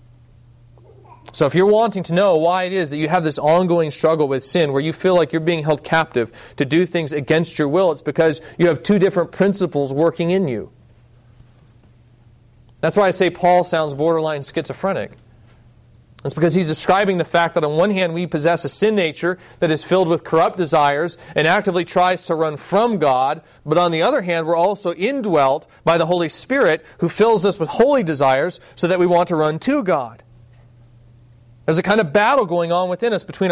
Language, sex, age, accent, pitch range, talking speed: English, male, 30-49, American, 125-185 Hz, 200 wpm